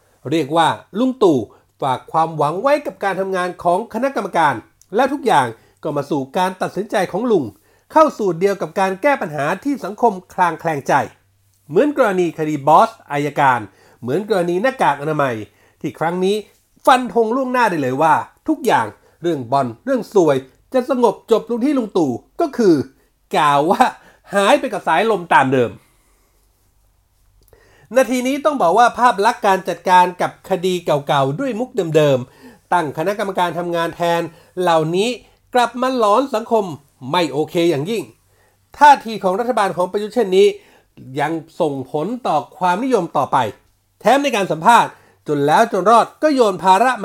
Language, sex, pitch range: Thai, male, 155-240 Hz